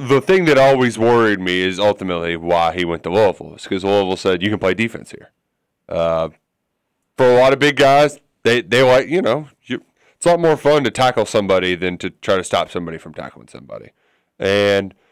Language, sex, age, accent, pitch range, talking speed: English, male, 30-49, American, 95-125 Hz, 205 wpm